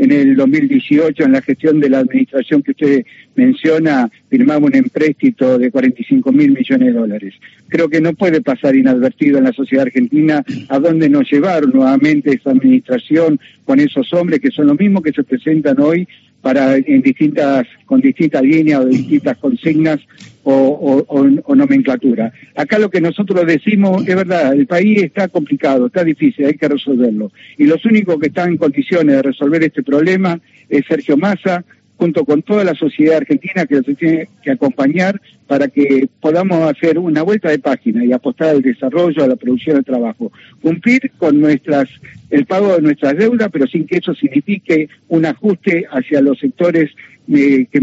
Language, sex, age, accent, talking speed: Spanish, male, 60-79, Argentinian, 175 wpm